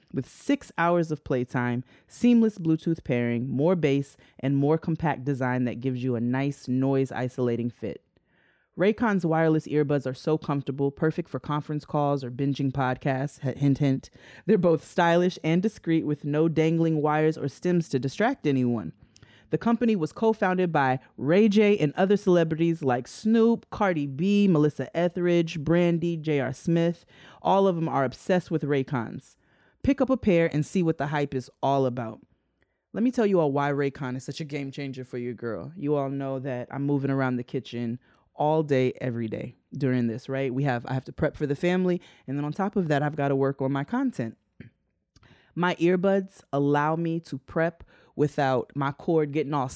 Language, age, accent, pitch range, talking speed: English, 30-49, American, 135-165 Hz, 185 wpm